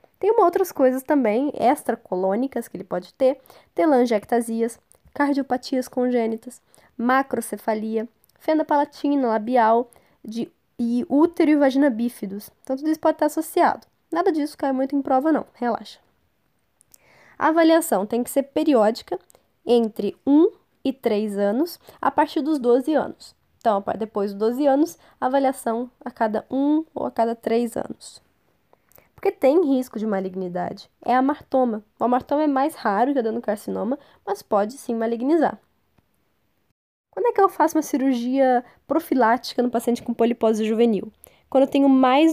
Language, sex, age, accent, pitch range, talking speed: Portuguese, female, 10-29, Brazilian, 230-300 Hz, 145 wpm